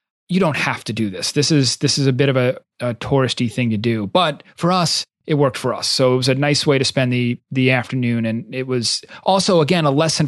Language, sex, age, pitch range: English, male, 30-49, 130-150 Hz